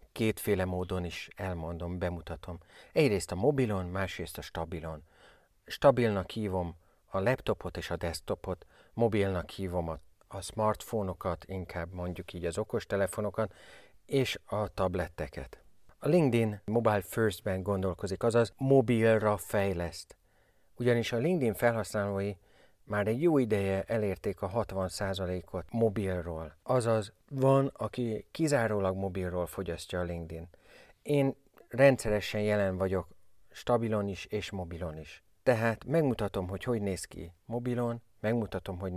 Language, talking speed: Hungarian, 120 wpm